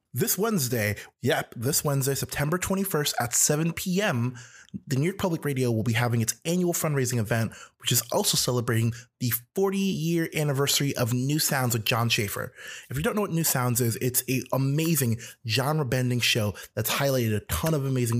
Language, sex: English, male